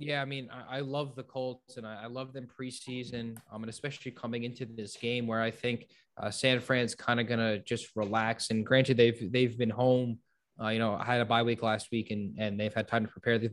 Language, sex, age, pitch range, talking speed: English, male, 20-39, 115-140 Hz, 250 wpm